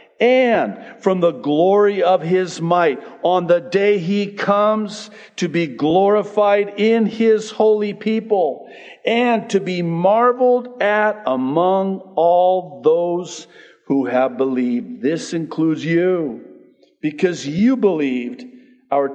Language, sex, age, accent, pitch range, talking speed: English, male, 50-69, American, 110-185 Hz, 115 wpm